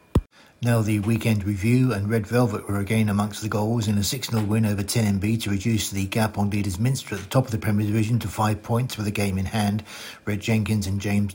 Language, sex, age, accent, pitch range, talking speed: English, male, 60-79, British, 100-115 Hz, 240 wpm